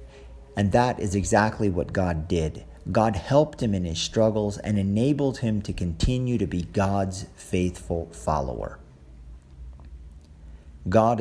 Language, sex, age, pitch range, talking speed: English, male, 50-69, 80-115 Hz, 130 wpm